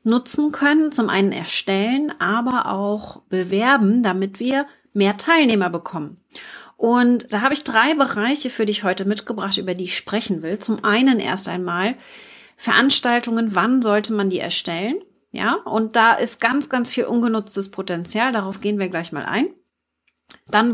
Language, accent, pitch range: German, German, 195-260 Hz